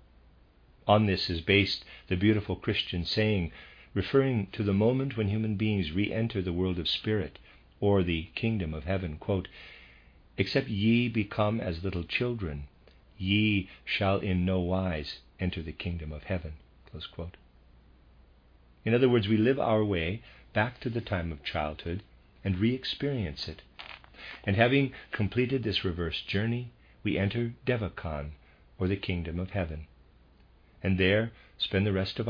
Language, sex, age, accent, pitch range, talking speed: English, male, 50-69, American, 75-105 Hz, 150 wpm